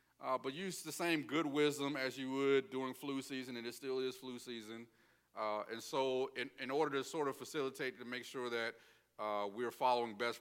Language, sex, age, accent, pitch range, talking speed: English, male, 40-59, American, 110-145 Hz, 220 wpm